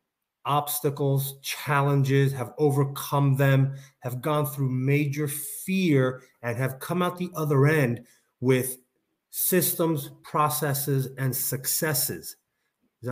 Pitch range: 130-165 Hz